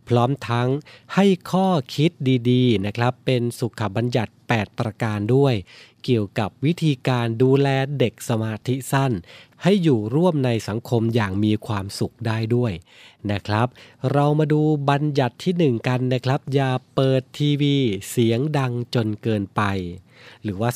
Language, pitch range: Thai, 115-140 Hz